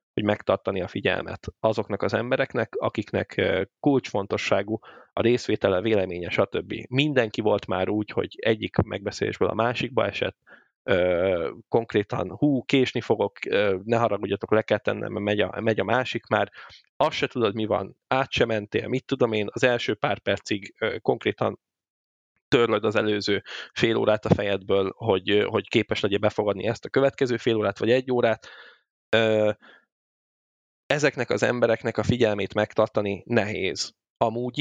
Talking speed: 155 wpm